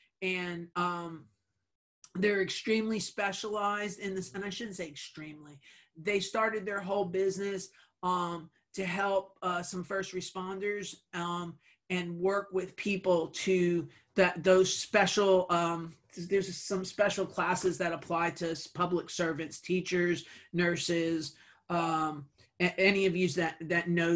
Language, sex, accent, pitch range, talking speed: English, male, American, 160-190 Hz, 130 wpm